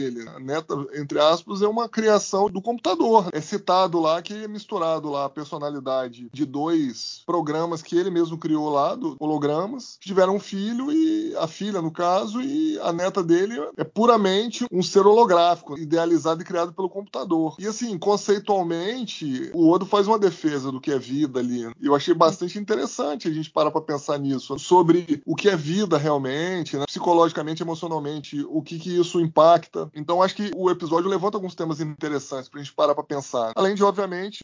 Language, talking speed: Portuguese, 185 wpm